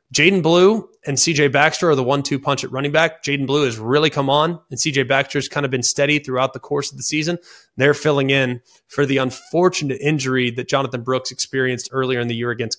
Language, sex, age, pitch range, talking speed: English, male, 20-39, 125-145 Hz, 225 wpm